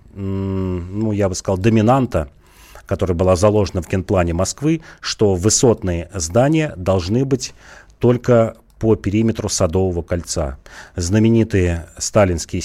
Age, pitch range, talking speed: 40-59, 90-110 Hz, 110 wpm